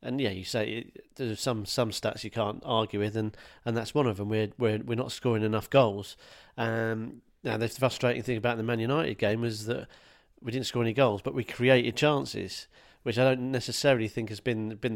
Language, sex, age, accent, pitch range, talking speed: English, male, 40-59, British, 110-130 Hz, 220 wpm